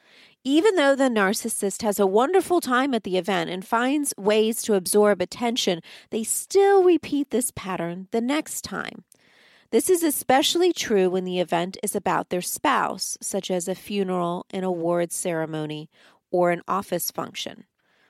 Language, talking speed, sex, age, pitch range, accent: English, 155 wpm, female, 40-59, 175-220 Hz, American